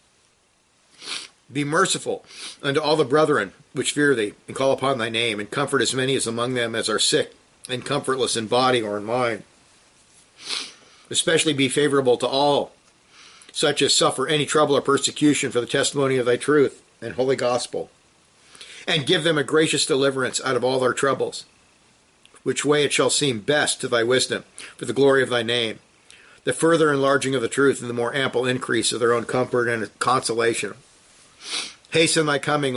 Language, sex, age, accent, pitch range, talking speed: English, male, 50-69, American, 120-145 Hz, 180 wpm